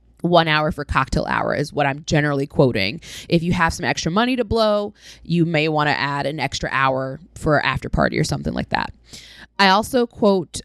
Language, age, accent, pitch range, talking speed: English, 20-39, American, 150-200 Hz, 205 wpm